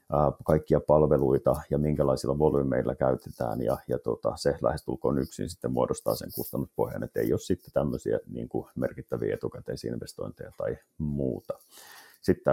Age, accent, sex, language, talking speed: 30-49, native, male, Finnish, 140 wpm